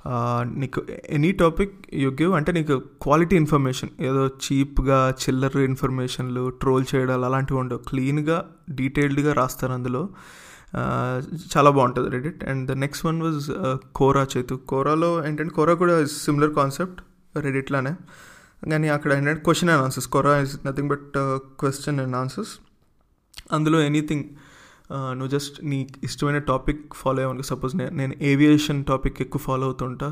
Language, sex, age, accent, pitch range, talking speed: English, male, 20-39, Indian, 130-150 Hz, 115 wpm